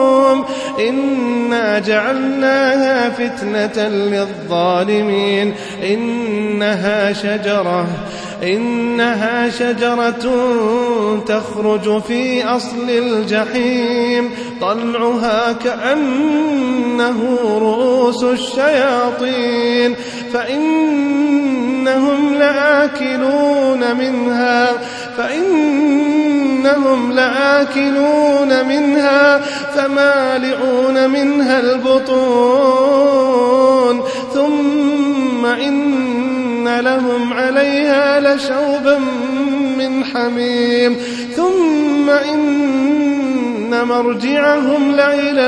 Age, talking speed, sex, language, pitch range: 30-49, 50 wpm, male, Arabic, 240-275 Hz